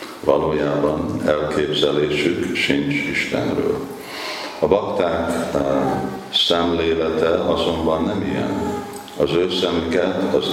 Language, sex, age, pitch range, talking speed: Hungarian, male, 50-69, 75-85 Hz, 85 wpm